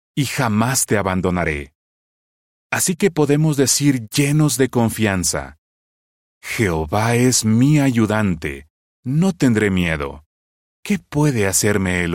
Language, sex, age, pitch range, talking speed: Spanish, male, 30-49, 85-130 Hz, 110 wpm